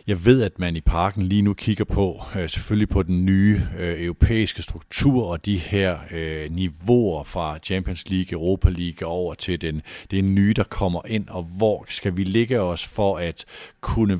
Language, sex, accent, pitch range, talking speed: Danish, male, native, 90-110 Hz, 190 wpm